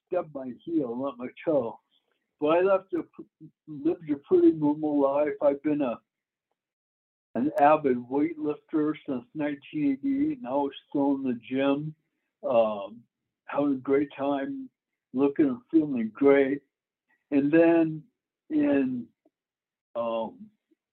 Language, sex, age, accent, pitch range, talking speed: English, male, 60-79, American, 135-180 Hz, 120 wpm